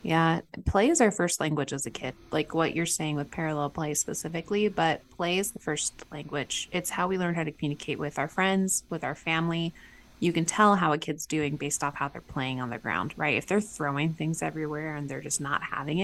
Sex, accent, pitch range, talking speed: female, American, 145-175 Hz, 230 wpm